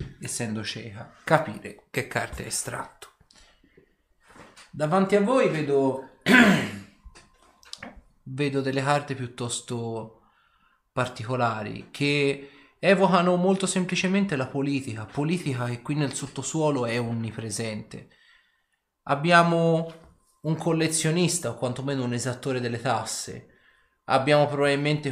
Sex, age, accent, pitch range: male, 30-49, native, 115-160 Hz